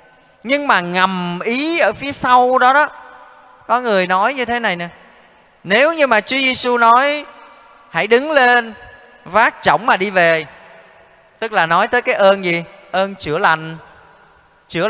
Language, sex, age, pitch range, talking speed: Vietnamese, male, 20-39, 170-250 Hz, 165 wpm